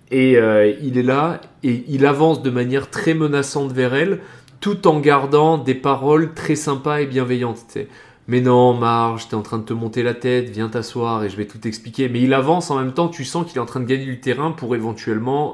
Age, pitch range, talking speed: 30-49, 110-135 Hz, 235 wpm